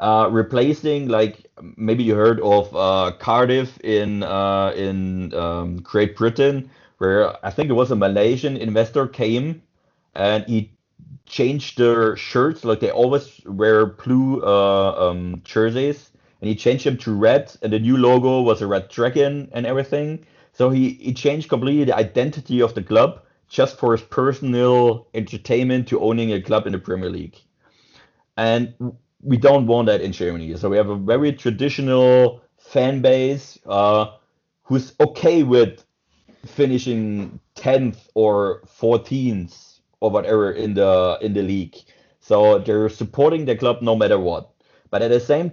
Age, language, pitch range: 30-49, Persian, 105-130 Hz